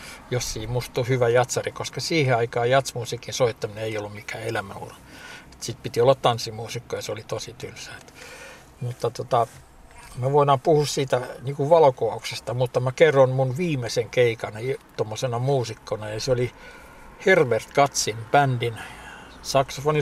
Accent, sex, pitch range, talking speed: native, male, 115-135 Hz, 130 wpm